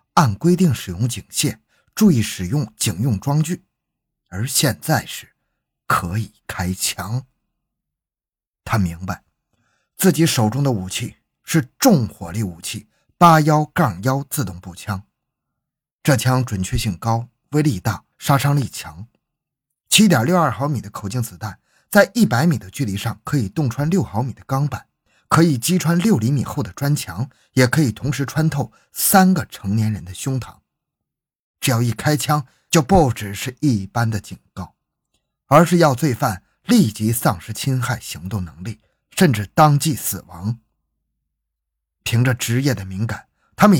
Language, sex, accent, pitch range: Chinese, male, native, 100-145 Hz